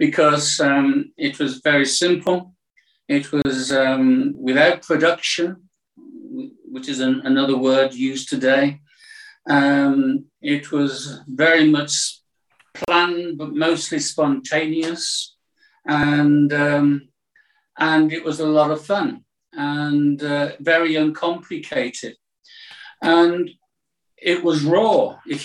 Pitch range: 145-185 Hz